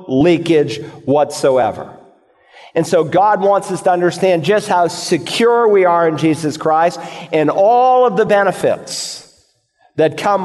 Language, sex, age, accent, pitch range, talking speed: English, male, 50-69, American, 145-170 Hz, 140 wpm